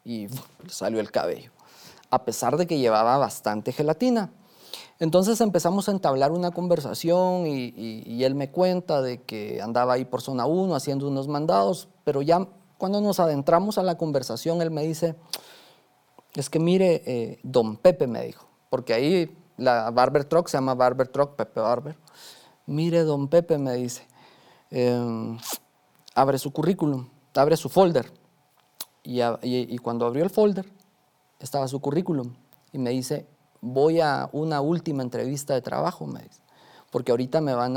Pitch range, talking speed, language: 125-170 Hz, 160 wpm, Spanish